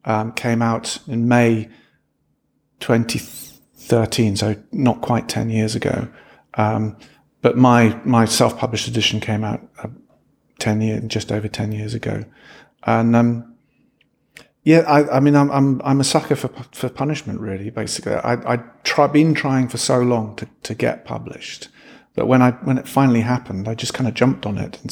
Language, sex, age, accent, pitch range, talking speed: English, male, 40-59, British, 110-125 Hz, 175 wpm